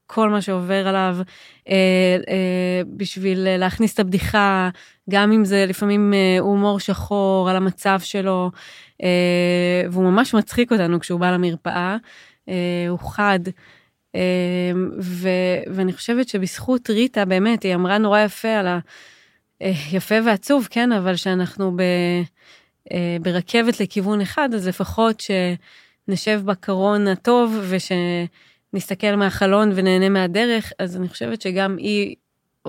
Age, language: 20-39, Hebrew